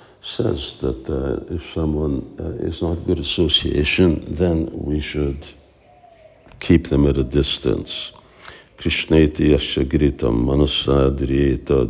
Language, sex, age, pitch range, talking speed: English, male, 60-79, 70-85 Hz, 100 wpm